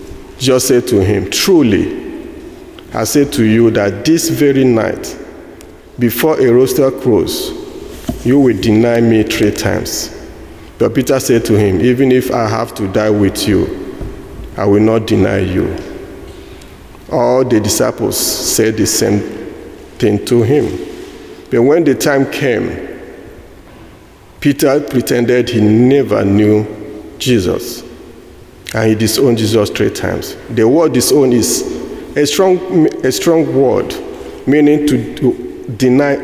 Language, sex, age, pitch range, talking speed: English, male, 50-69, 110-145 Hz, 130 wpm